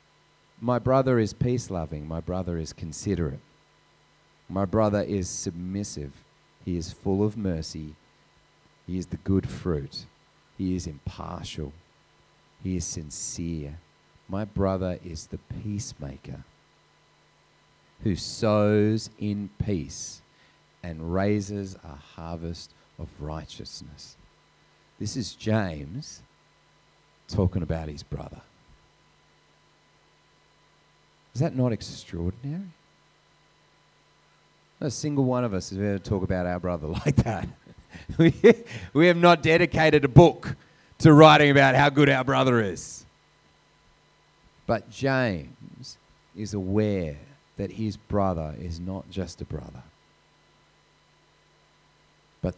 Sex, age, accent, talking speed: male, 40-59, Australian, 110 wpm